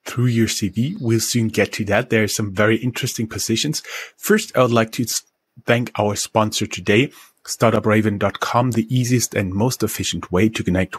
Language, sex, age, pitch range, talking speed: English, male, 30-49, 105-125 Hz, 175 wpm